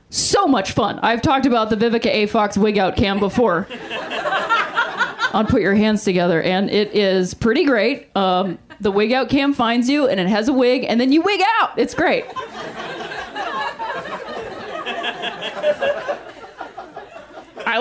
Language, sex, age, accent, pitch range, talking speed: English, female, 30-49, American, 240-320 Hz, 140 wpm